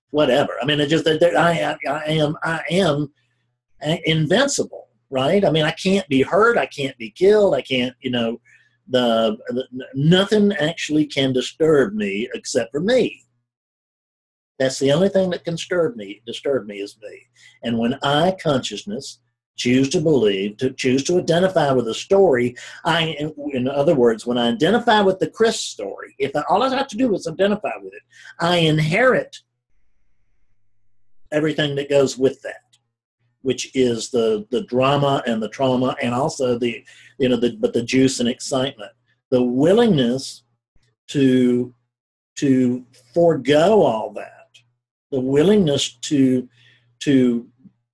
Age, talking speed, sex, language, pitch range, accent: 50-69, 155 wpm, male, English, 120-165 Hz, American